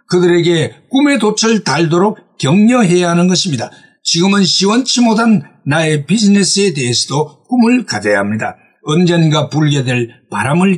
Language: Korean